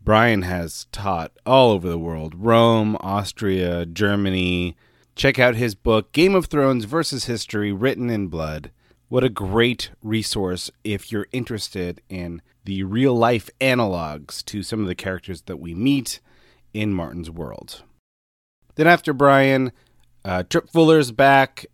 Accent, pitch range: American, 90-125 Hz